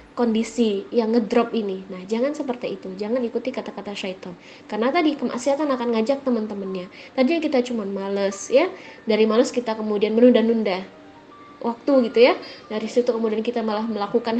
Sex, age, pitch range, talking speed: female, 20-39, 215-275 Hz, 155 wpm